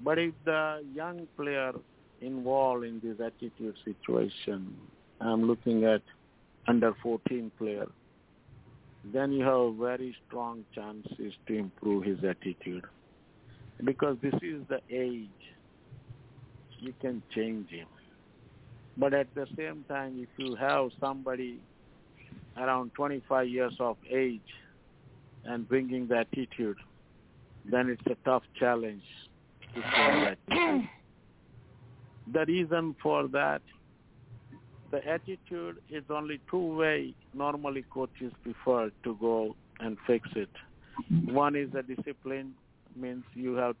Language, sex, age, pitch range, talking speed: English, male, 60-79, 115-135 Hz, 115 wpm